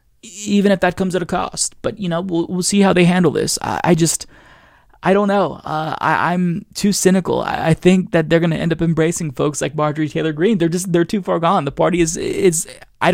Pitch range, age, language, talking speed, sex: 145-180 Hz, 20-39, English, 245 wpm, male